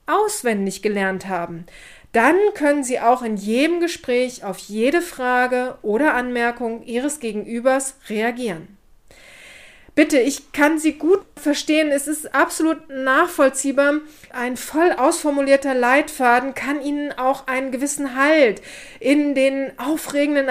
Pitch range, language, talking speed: 245-290 Hz, German, 120 wpm